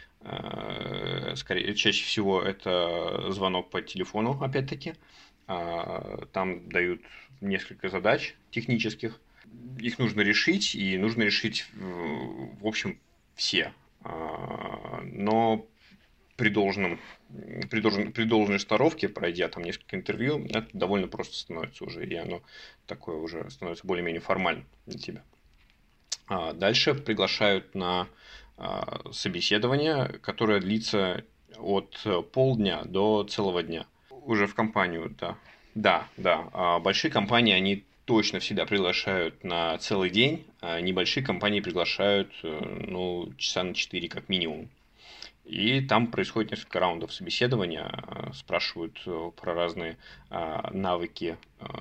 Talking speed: 110 wpm